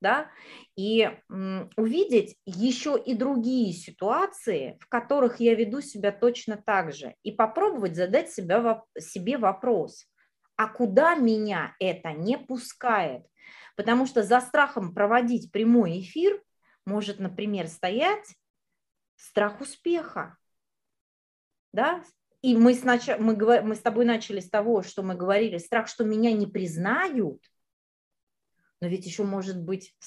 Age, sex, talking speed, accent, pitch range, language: 30-49, female, 120 wpm, native, 190-240 Hz, Russian